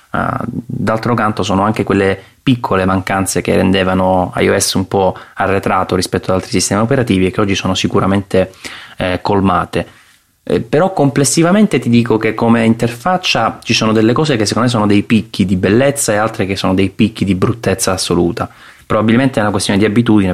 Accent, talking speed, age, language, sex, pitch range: native, 175 wpm, 20-39, Italian, male, 95-110 Hz